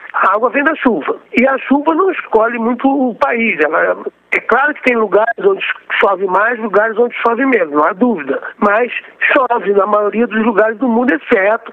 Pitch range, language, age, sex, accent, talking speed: 210-260 Hz, Portuguese, 60-79, male, Brazilian, 200 wpm